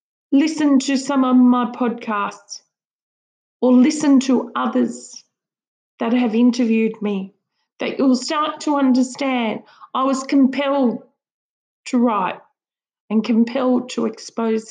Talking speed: 115 wpm